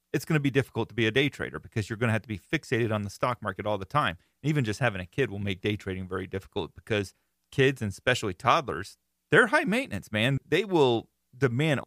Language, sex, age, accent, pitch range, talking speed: English, male, 30-49, American, 105-135 Hz, 245 wpm